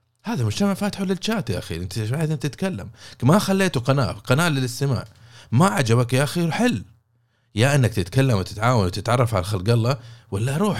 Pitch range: 100-130 Hz